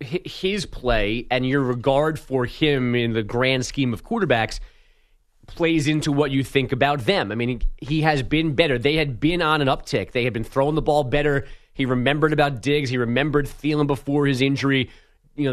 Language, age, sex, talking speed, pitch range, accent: English, 30-49, male, 195 wpm, 125-150 Hz, American